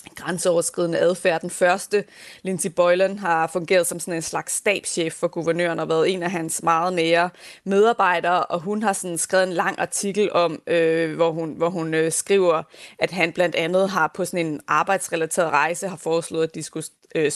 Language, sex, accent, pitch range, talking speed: Danish, female, native, 170-195 Hz, 195 wpm